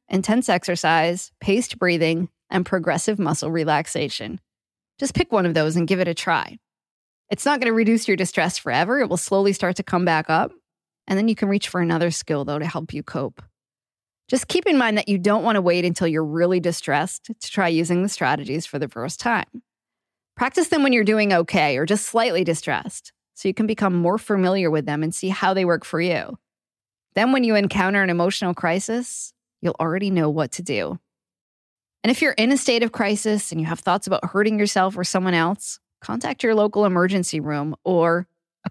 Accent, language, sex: American, English, female